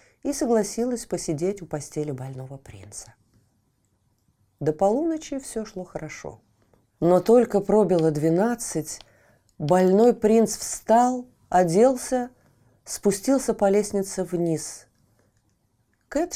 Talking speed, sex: 90 wpm, female